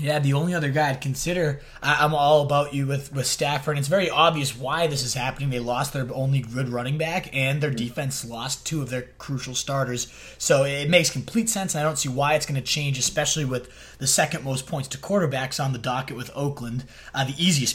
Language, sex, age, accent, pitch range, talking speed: English, male, 20-39, American, 125-150 Hz, 225 wpm